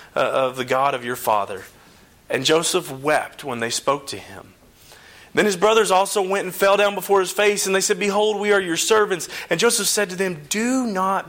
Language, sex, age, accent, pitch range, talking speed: English, male, 30-49, American, 150-210 Hz, 220 wpm